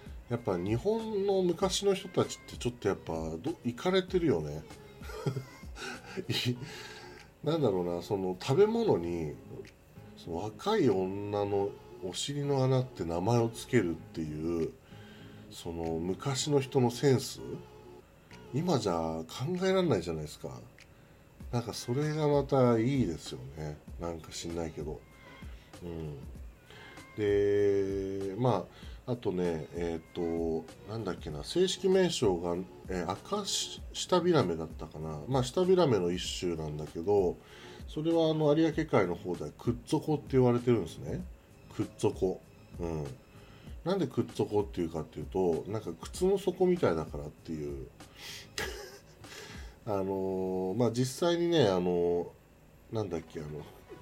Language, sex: Japanese, male